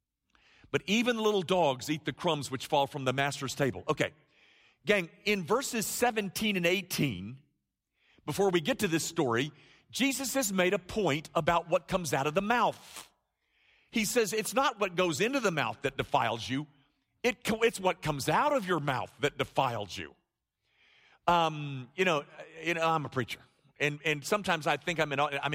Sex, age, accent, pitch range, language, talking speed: male, 50-69, American, 140-200 Hz, English, 185 wpm